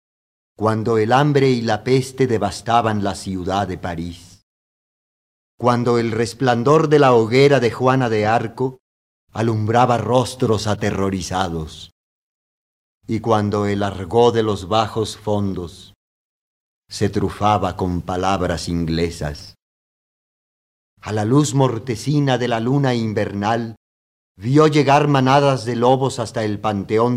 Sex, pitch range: male, 95-125 Hz